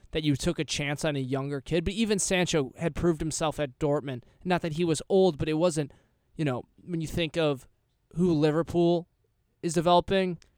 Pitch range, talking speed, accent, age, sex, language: 135-170 Hz, 200 wpm, American, 20-39, male, English